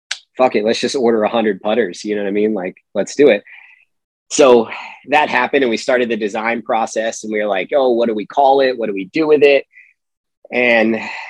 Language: English